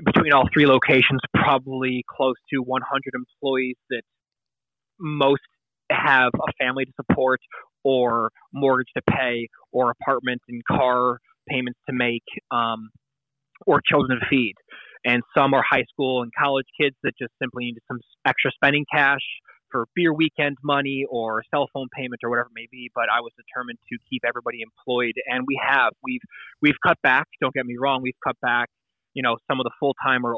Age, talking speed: 20-39, 180 wpm